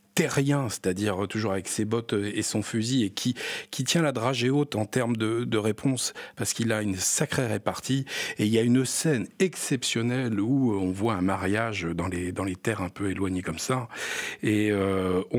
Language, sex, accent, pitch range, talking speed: French, male, French, 95-125 Hz, 200 wpm